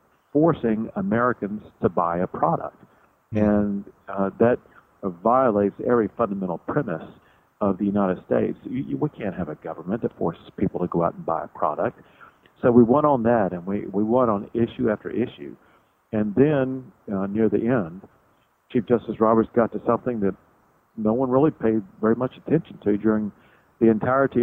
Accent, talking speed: American, 170 wpm